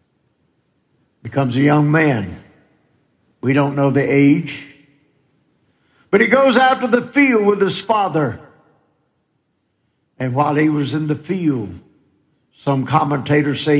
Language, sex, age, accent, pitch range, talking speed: English, male, 60-79, American, 130-160 Hz, 125 wpm